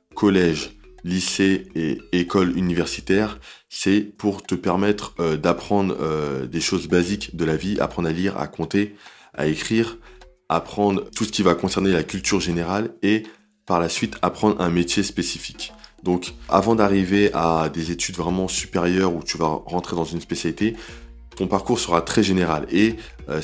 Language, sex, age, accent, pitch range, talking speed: French, male, 20-39, French, 85-100 Hz, 165 wpm